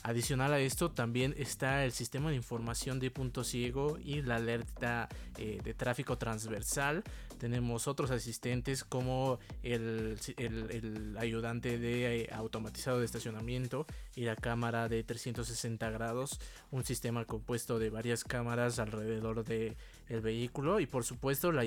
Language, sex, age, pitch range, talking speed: Spanish, male, 20-39, 115-130 Hz, 140 wpm